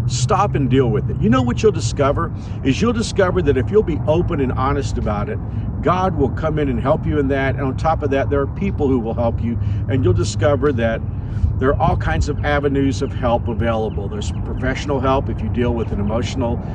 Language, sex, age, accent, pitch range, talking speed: English, male, 50-69, American, 100-130 Hz, 235 wpm